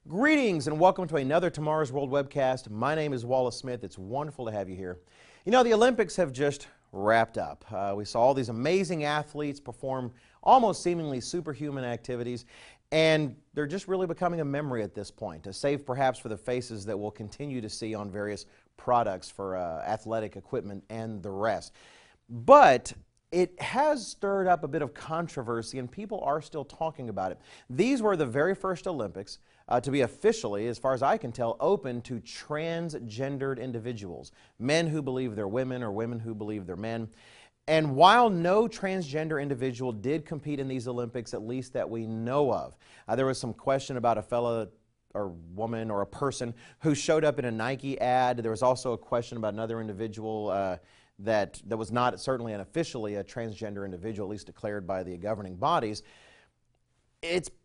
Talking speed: 185 wpm